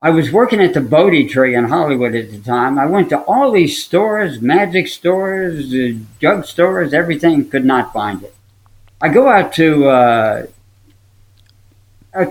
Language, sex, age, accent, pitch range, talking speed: English, male, 60-79, American, 110-180 Hz, 155 wpm